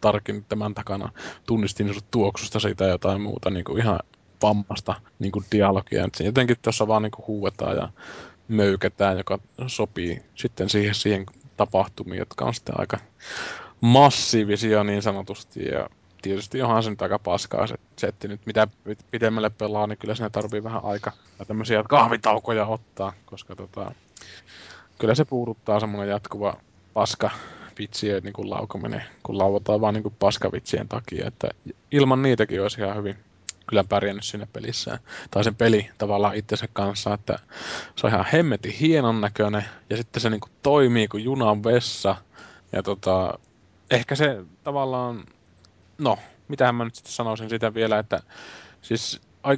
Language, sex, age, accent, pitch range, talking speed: Finnish, male, 20-39, native, 100-115 Hz, 140 wpm